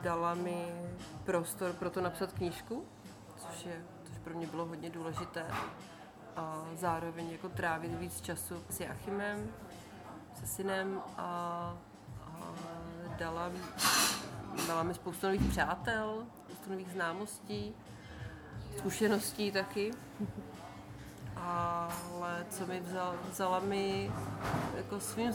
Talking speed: 100 wpm